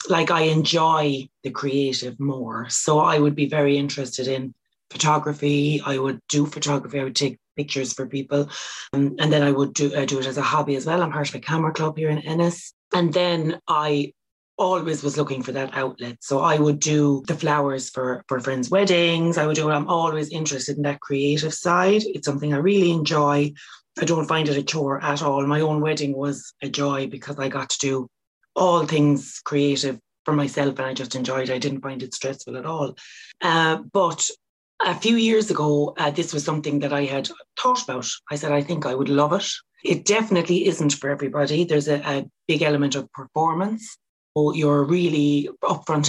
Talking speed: 205 wpm